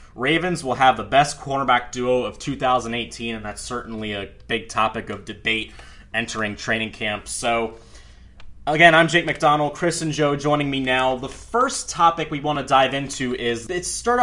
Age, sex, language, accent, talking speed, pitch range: 20-39, male, English, American, 175 wpm, 115-145 Hz